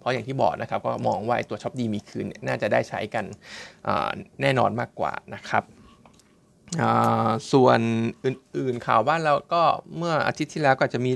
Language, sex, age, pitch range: Thai, male, 20-39, 115-135 Hz